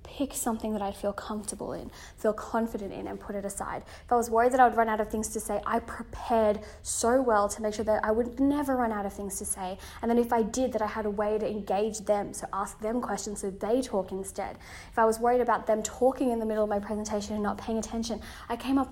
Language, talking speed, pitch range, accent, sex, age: English, 270 wpm, 210-245 Hz, Australian, female, 10-29